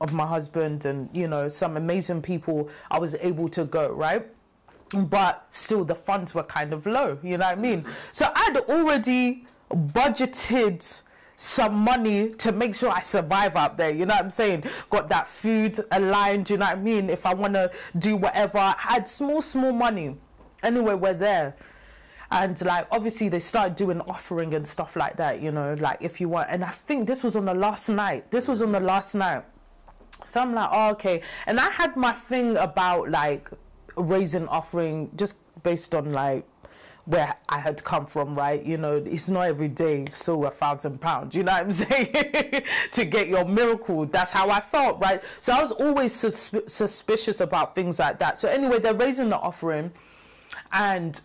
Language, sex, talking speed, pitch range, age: English, female, 195 wpm, 165-225 Hz, 20-39